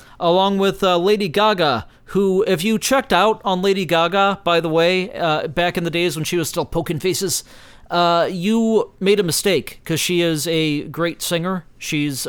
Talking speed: 190 wpm